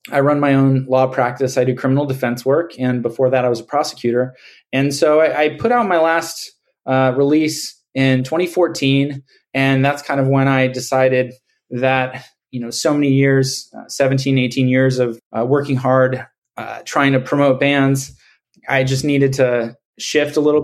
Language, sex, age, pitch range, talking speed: English, male, 20-39, 130-145 Hz, 185 wpm